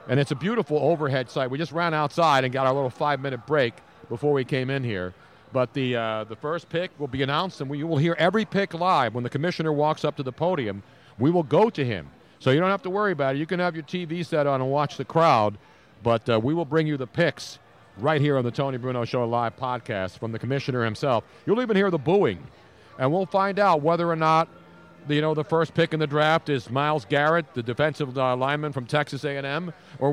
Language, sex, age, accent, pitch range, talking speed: English, male, 50-69, American, 135-170 Hz, 240 wpm